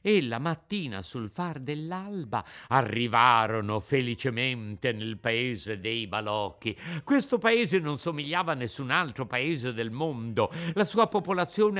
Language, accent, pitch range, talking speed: Italian, native, 140-195 Hz, 125 wpm